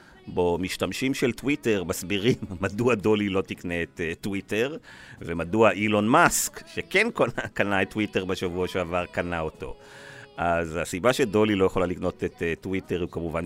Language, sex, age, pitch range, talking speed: Hebrew, male, 40-59, 80-100 Hz, 145 wpm